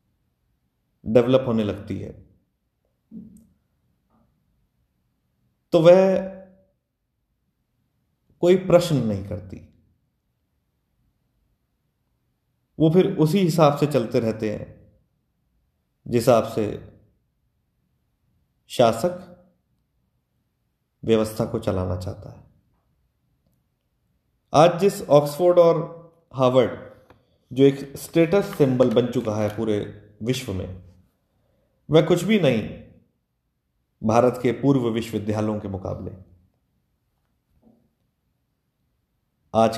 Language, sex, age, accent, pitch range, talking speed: English, male, 30-49, Indian, 95-140 Hz, 80 wpm